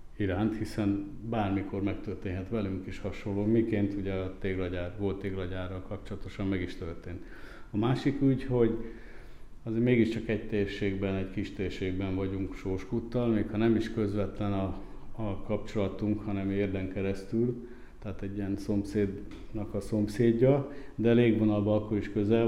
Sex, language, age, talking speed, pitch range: male, Hungarian, 50-69, 140 wpm, 95-110 Hz